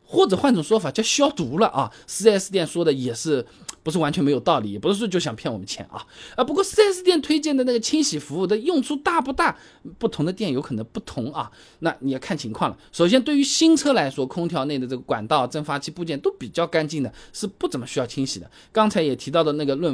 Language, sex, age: Chinese, male, 20-39